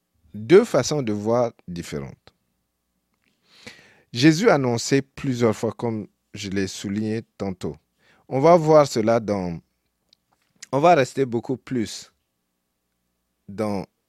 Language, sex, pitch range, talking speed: French, male, 90-135 Hz, 110 wpm